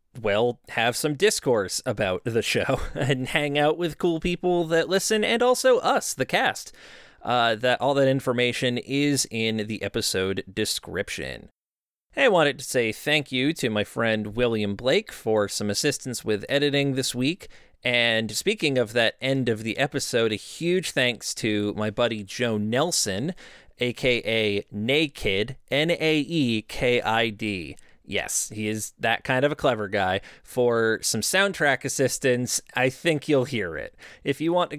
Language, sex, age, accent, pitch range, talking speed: English, male, 30-49, American, 115-150 Hz, 155 wpm